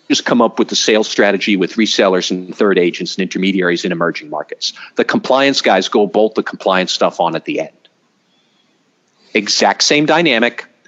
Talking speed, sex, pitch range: 175 wpm, male, 100-135 Hz